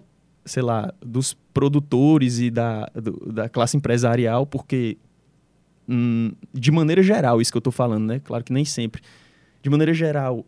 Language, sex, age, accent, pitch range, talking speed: Portuguese, male, 20-39, Brazilian, 120-155 Hz, 160 wpm